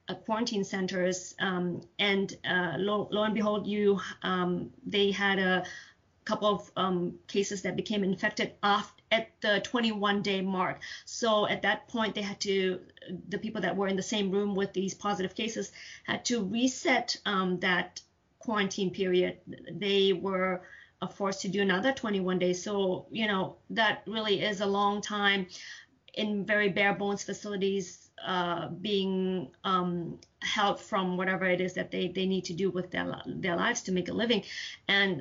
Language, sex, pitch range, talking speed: English, female, 180-205 Hz, 165 wpm